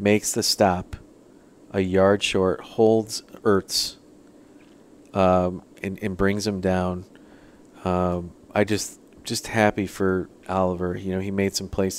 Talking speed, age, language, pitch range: 135 wpm, 30-49, English, 95-110 Hz